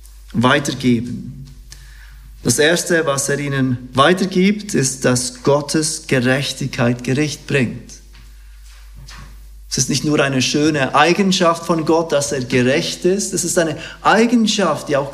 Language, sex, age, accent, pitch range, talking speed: German, male, 40-59, German, 125-165 Hz, 125 wpm